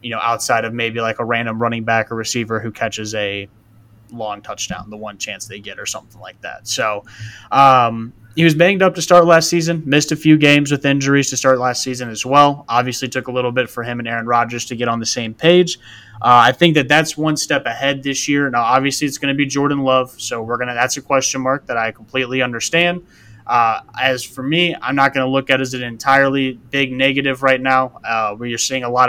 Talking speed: 245 wpm